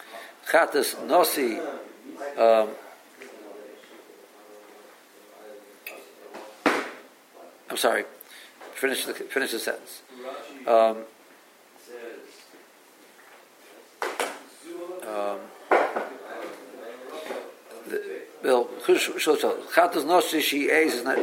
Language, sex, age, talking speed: English, male, 50-69, 60 wpm